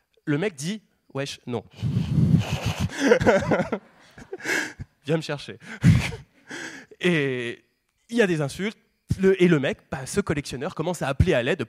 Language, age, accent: French, 20-39, French